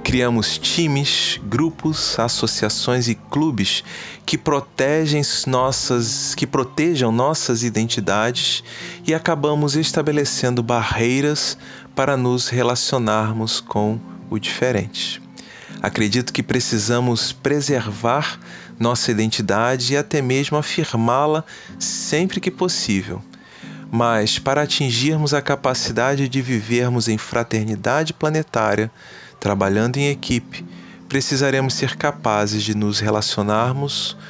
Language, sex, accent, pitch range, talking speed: Portuguese, male, Brazilian, 110-145 Hz, 95 wpm